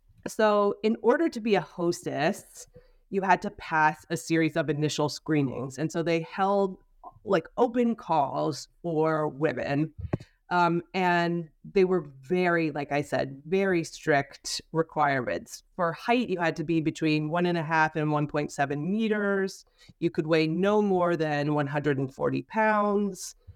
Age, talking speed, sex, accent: 30-49, 150 wpm, female, American